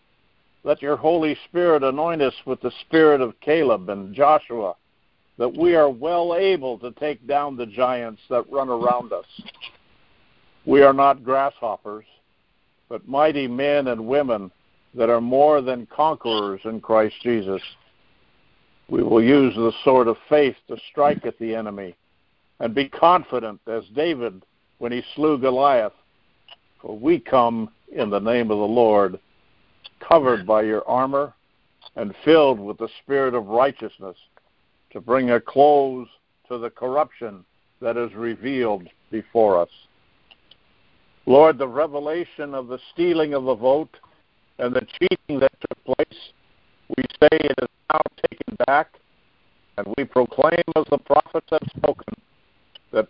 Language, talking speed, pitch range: English, 145 wpm, 115-145 Hz